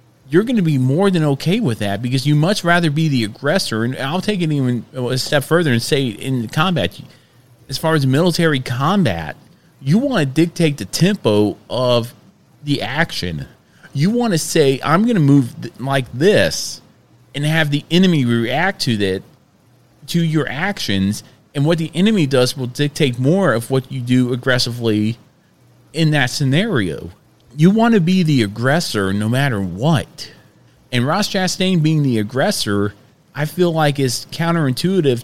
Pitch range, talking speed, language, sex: 120-160 Hz, 170 wpm, English, male